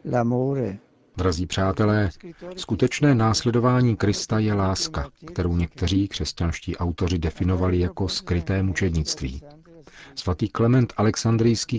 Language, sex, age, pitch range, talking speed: Czech, male, 40-59, 90-105 Hz, 90 wpm